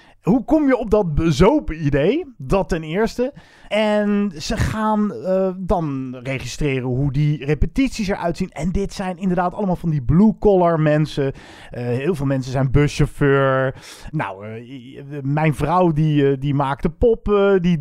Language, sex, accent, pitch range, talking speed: Dutch, male, Dutch, 150-190 Hz, 160 wpm